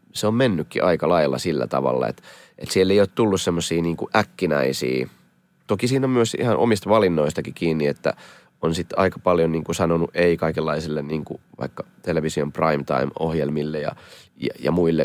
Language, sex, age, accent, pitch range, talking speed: Finnish, male, 30-49, native, 75-90 Hz, 175 wpm